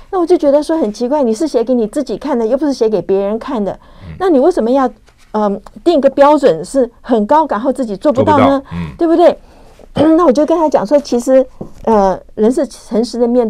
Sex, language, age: female, Chinese, 50-69